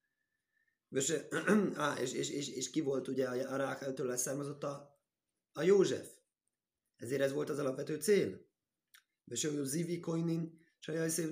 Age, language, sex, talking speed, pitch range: 30-49, Hungarian, male, 120 wpm, 135-175 Hz